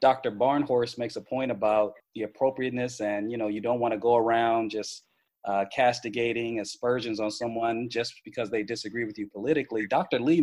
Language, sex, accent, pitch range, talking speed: English, male, American, 115-145 Hz, 185 wpm